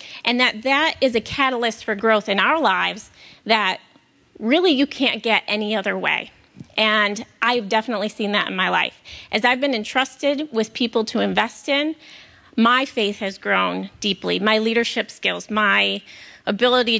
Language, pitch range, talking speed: English, 215-265 Hz, 160 wpm